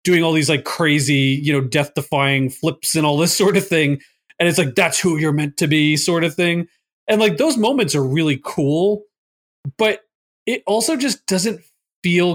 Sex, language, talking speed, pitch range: male, English, 200 wpm, 135-175 Hz